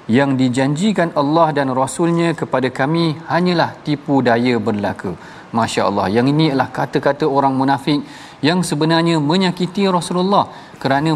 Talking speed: 125 wpm